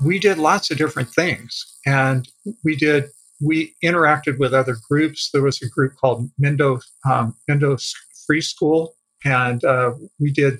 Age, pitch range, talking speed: 40-59, 125-145 Hz, 160 wpm